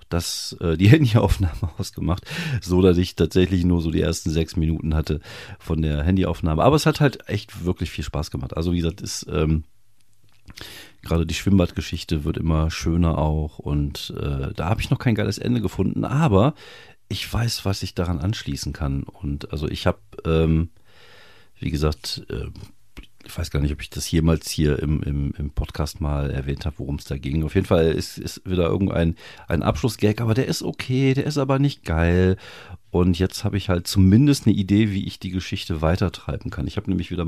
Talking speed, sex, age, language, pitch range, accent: 195 wpm, male, 40-59, German, 80-105 Hz, German